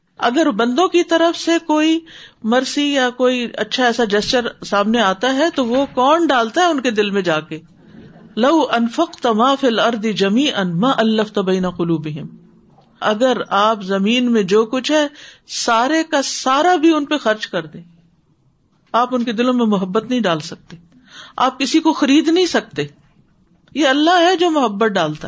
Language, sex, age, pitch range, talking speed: Urdu, female, 50-69, 180-255 Hz, 175 wpm